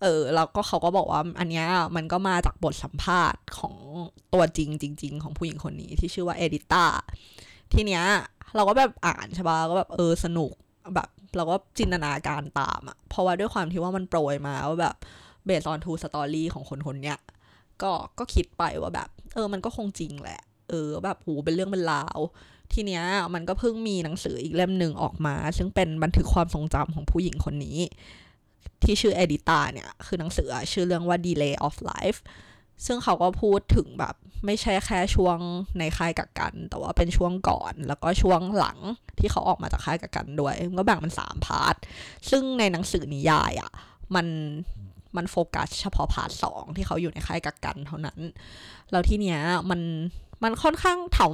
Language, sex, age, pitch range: Thai, female, 20-39, 150-185 Hz